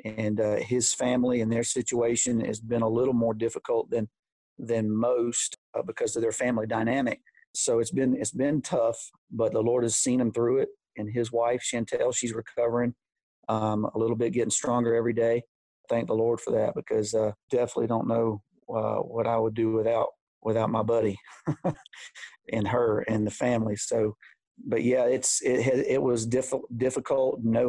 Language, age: English, 40-59